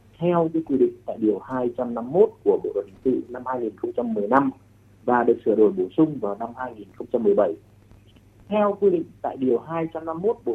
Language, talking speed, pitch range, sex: Vietnamese, 170 wpm, 105-160 Hz, male